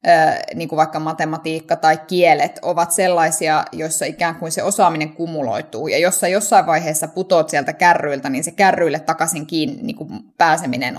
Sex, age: female, 20-39